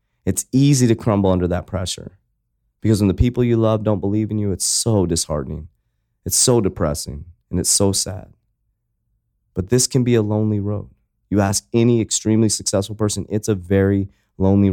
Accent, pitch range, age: American, 95-110 Hz, 30-49